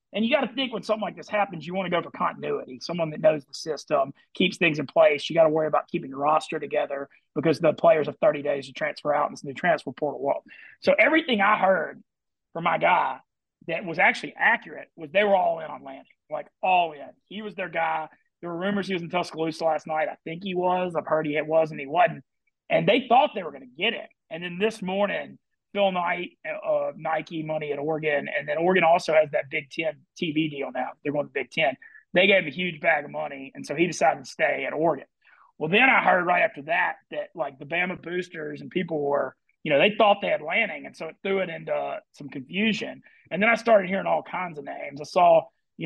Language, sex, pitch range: English, male, 155-200 Hz